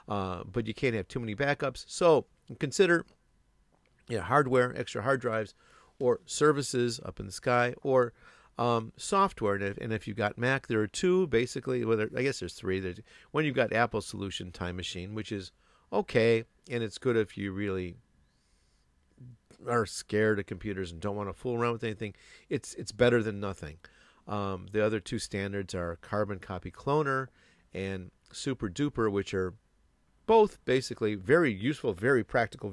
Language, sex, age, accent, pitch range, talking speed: English, male, 50-69, American, 95-120 Hz, 170 wpm